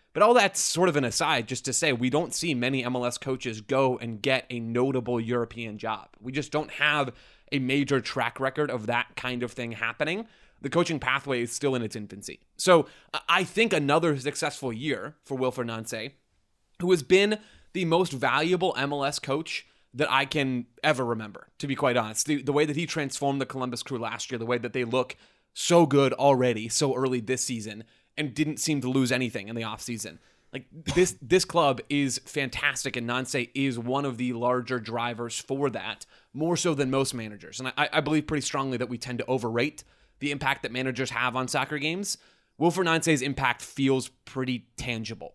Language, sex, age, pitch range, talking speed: English, male, 20-39, 125-150 Hz, 195 wpm